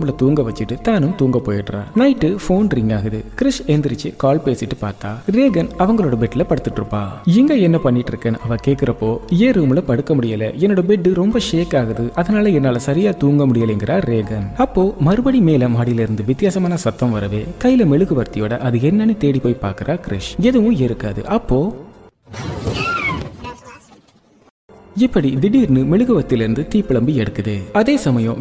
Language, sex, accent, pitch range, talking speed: Tamil, male, native, 115-185 Hz, 55 wpm